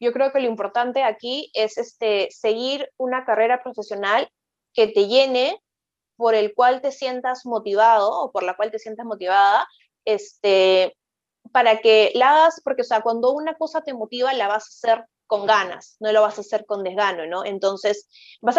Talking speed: 185 wpm